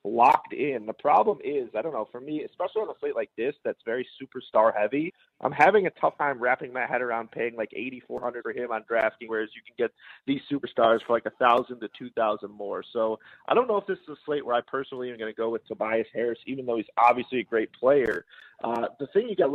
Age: 30-49